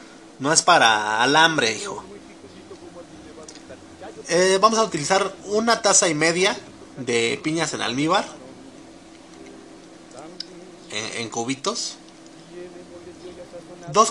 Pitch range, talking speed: 145-210 Hz, 90 wpm